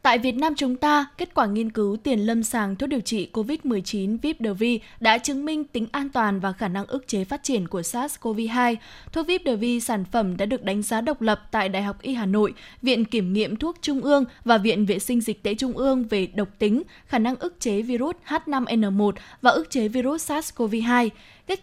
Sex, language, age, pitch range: female, Vietnamese, 10-29, 215-275 Hz